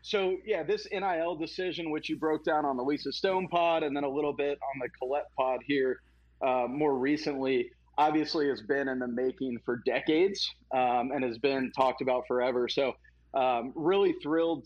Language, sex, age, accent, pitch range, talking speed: English, male, 30-49, American, 130-165 Hz, 190 wpm